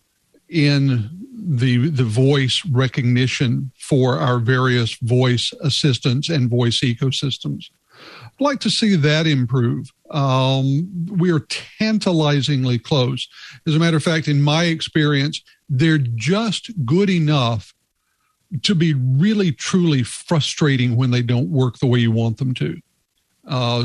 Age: 60-79